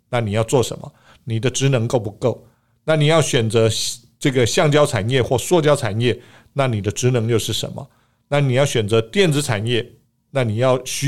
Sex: male